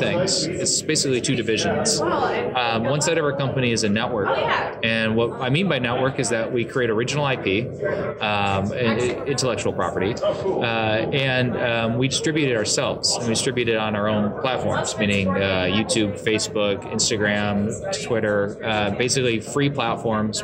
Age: 30-49